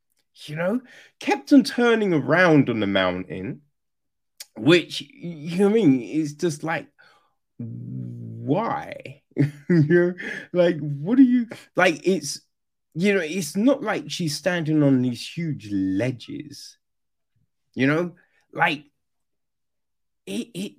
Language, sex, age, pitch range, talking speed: English, male, 30-49, 145-225 Hz, 125 wpm